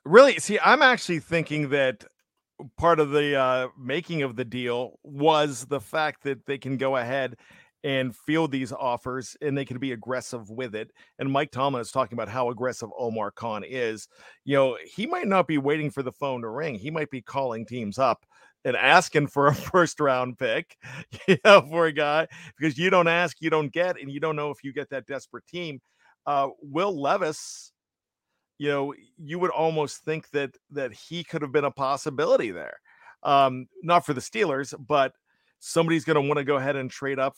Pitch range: 130-160 Hz